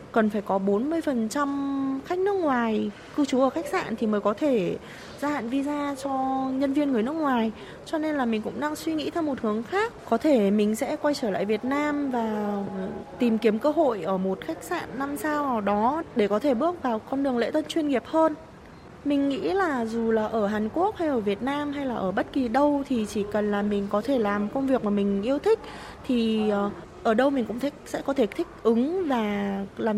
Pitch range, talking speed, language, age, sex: 215-295 Hz, 235 wpm, Vietnamese, 20-39, female